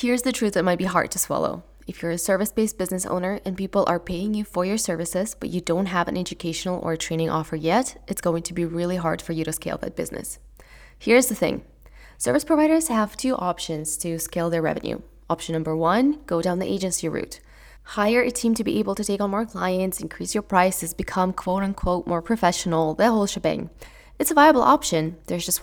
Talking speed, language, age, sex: 215 wpm, English, 20-39, female